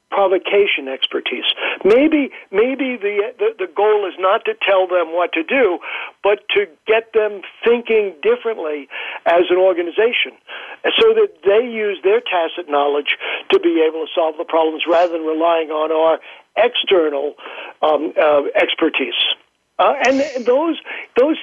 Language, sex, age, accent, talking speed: English, male, 60-79, American, 150 wpm